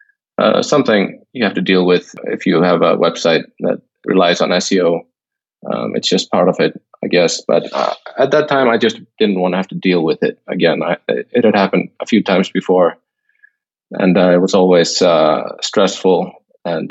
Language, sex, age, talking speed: English, male, 30-49, 195 wpm